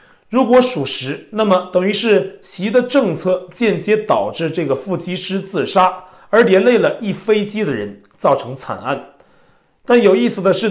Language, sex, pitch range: Chinese, male, 170-225 Hz